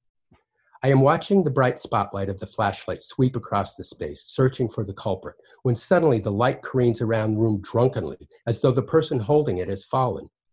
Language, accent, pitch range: English, American, 100-125 Hz